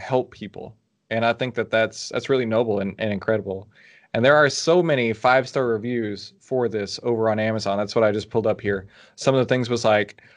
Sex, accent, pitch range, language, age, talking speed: male, American, 110-135 Hz, English, 20-39, 220 wpm